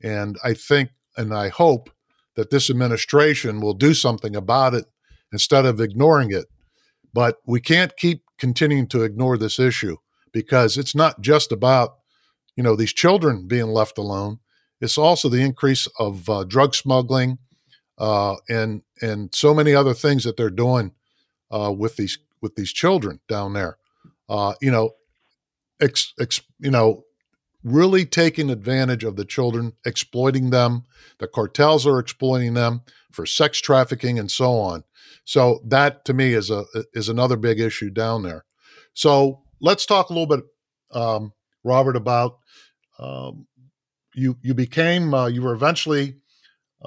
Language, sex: English, male